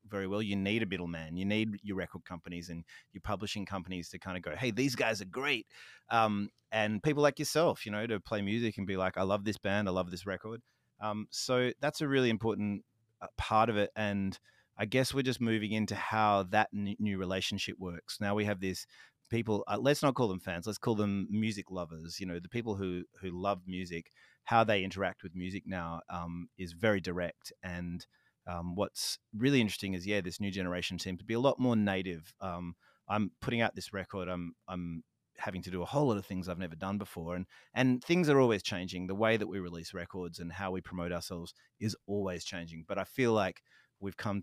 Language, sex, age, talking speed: English, male, 30-49, 220 wpm